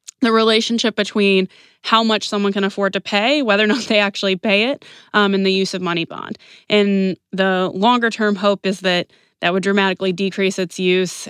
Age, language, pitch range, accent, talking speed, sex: 20-39, English, 190-230 Hz, American, 195 wpm, female